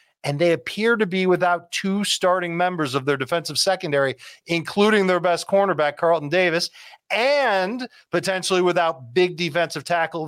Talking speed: 145 wpm